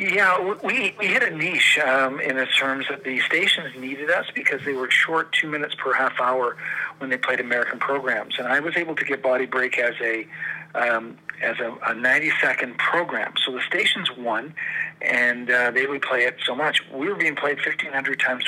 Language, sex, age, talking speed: English, male, 50-69, 200 wpm